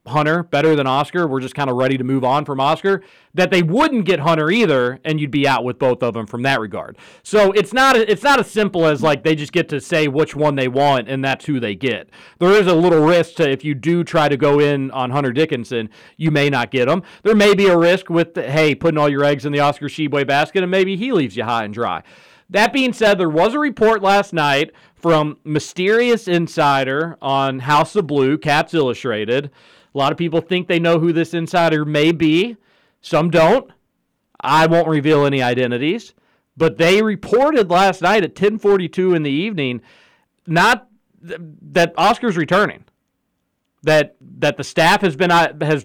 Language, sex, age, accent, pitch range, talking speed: English, male, 40-59, American, 145-180 Hz, 210 wpm